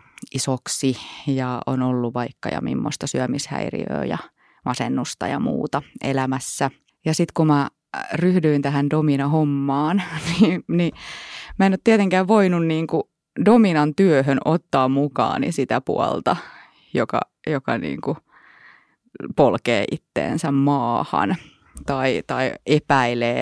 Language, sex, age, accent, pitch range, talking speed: Finnish, female, 30-49, native, 140-210 Hz, 110 wpm